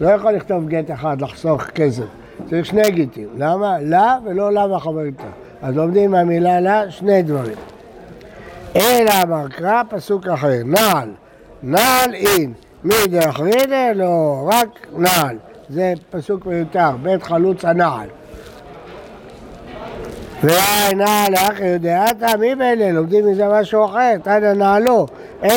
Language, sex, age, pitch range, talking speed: Hebrew, male, 60-79, 160-210 Hz, 130 wpm